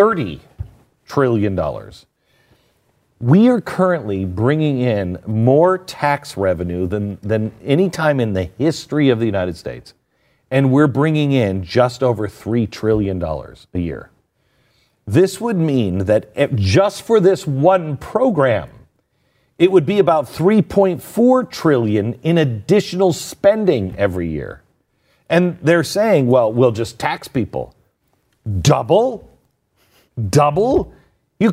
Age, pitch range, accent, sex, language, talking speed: 50-69, 115-170 Hz, American, male, English, 120 wpm